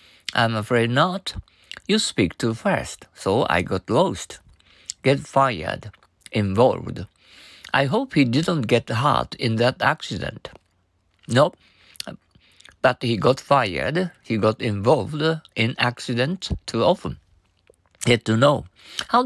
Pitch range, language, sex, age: 110-160 Hz, Japanese, male, 50-69